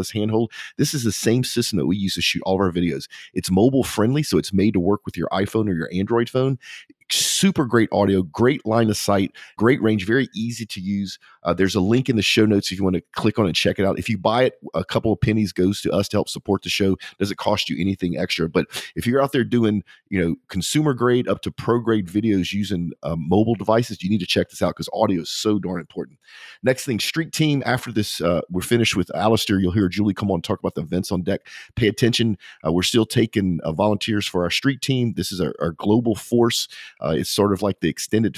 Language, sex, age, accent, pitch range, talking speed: English, male, 40-59, American, 95-115 Hz, 255 wpm